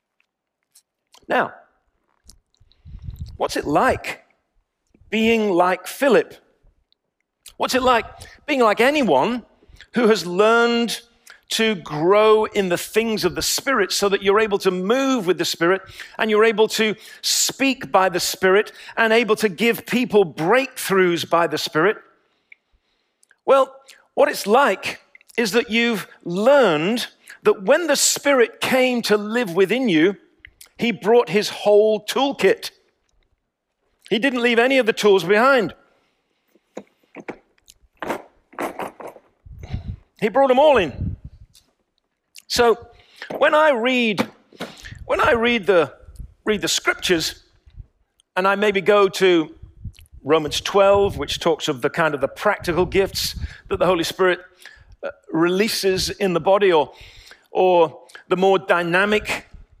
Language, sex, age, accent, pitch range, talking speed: English, male, 40-59, British, 180-240 Hz, 125 wpm